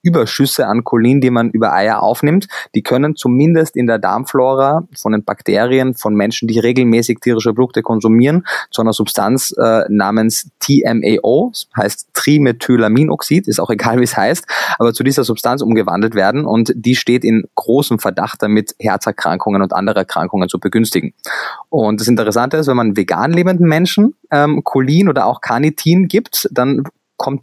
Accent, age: German, 20-39